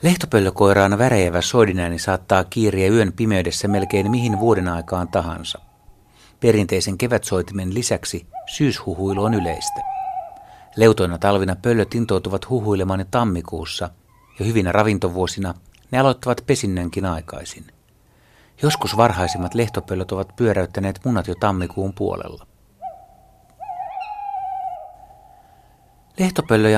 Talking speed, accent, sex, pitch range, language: 90 wpm, native, male, 95-120 Hz, Finnish